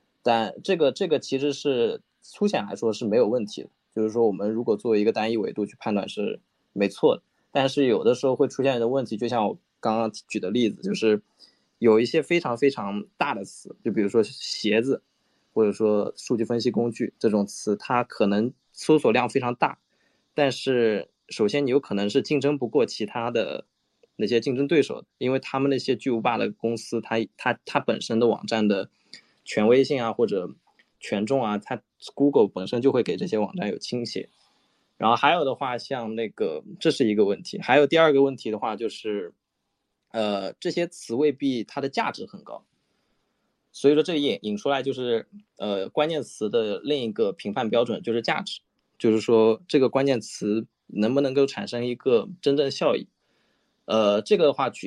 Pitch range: 110-140 Hz